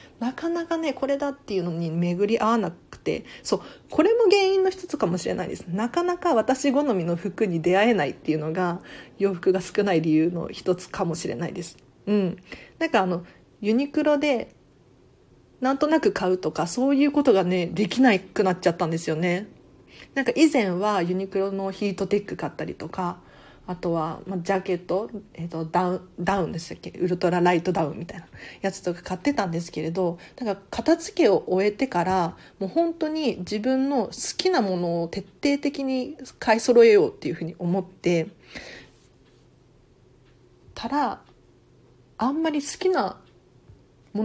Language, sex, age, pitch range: Japanese, female, 40-59, 175-260 Hz